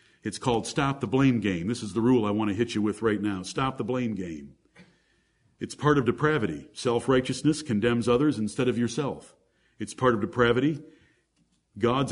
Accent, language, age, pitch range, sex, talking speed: American, English, 50-69, 125-210 Hz, male, 185 wpm